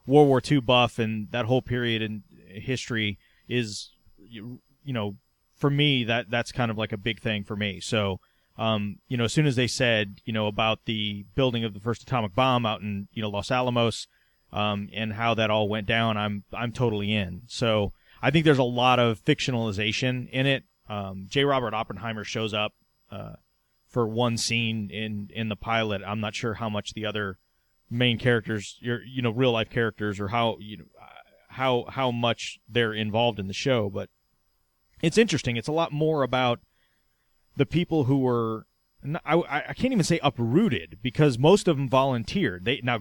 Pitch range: 105-130 Hz